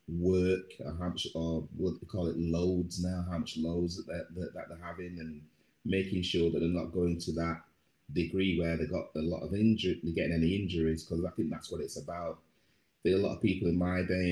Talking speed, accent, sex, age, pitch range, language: 230 wpm, British, male, 30-49, 80-90 Hz, English